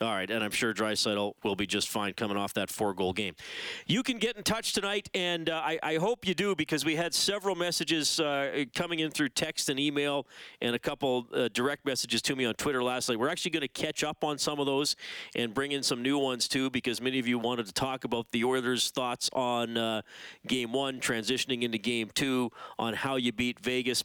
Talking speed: 230 wpm